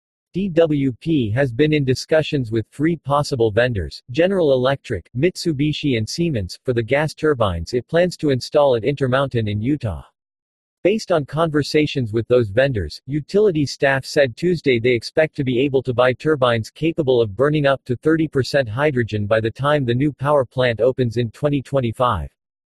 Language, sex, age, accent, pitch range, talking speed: English, male, 40-59, American, 120-150 Hz, 165 wpm